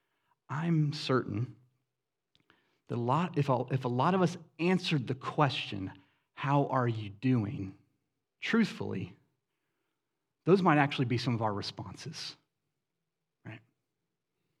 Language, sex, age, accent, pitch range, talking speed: English, male, 30-49, American, 110-145 Hz, 110 wpm